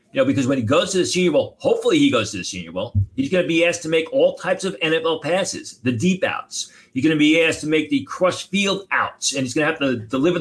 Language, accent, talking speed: English, American, 290 wpm